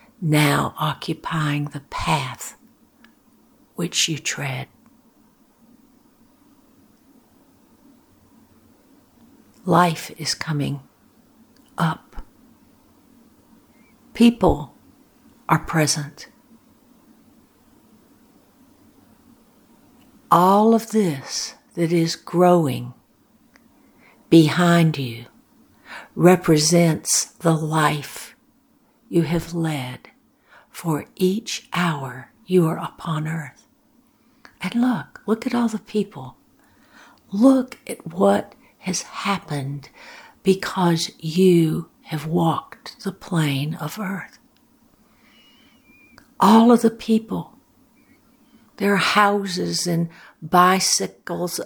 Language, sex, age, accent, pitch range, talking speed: English, female, 60-79, American, 165-245 Hz, 75 wpm